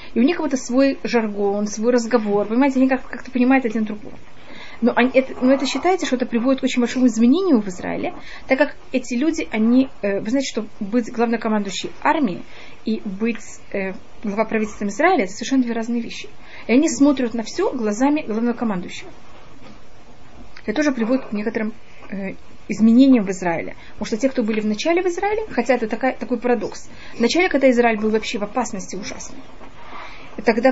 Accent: native